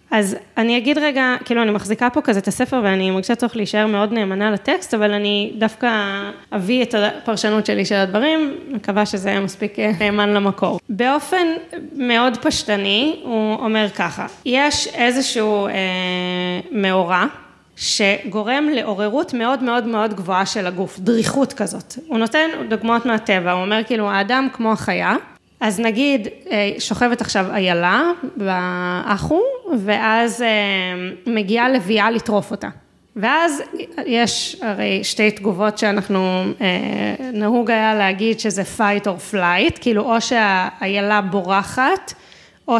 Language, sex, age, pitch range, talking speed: Hebrew, female, 20-39, 205-250 Hz, 130 wpm